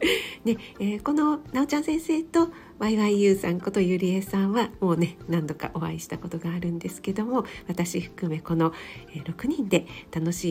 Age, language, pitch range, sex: 50-69, Japanese, 170-220 Hz, female